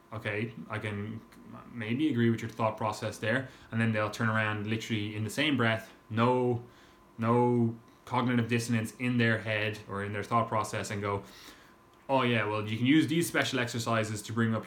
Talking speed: 190 wpm